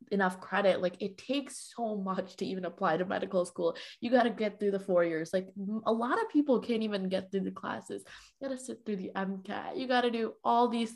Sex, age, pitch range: female, 20-39, 185-235 Hz